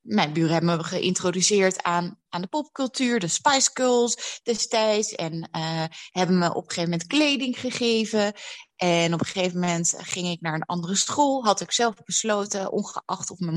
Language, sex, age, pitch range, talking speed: Dutch, female, 20-39, 160-215 Hz, 180 wpm